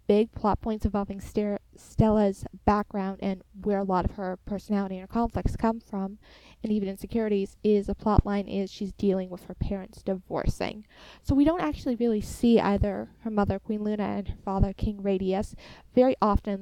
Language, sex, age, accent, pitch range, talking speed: English, female, 10-29, American, 195-220 Hz, 190 wpm